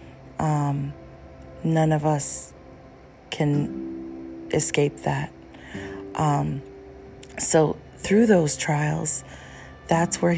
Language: English